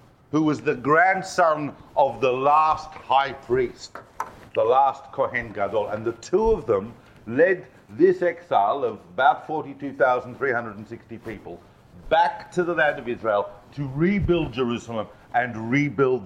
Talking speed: 135 wpm